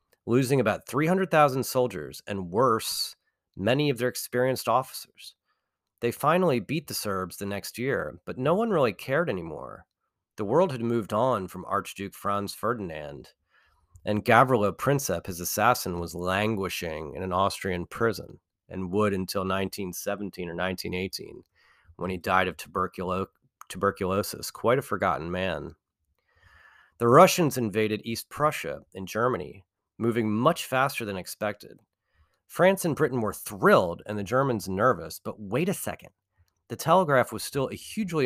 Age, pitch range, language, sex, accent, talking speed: 30-49, 95-130 Hz, English, male, American, 145 wpm